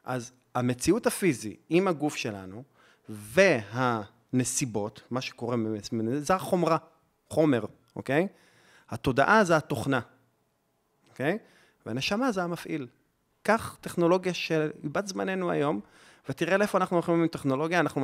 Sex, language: male, Hebrew